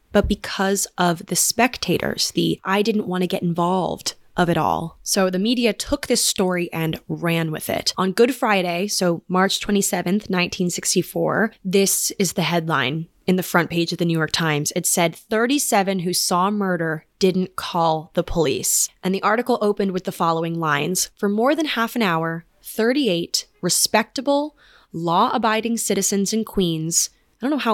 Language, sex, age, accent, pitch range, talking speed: English, female, 20-39, American, 170-220 Hz, 170 wpm